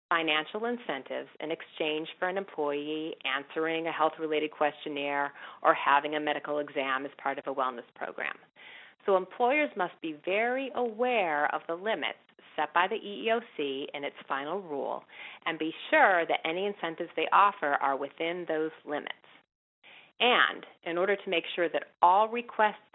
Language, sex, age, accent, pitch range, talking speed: English, female, 40-59, American, 150-200 Hz, 155 wpm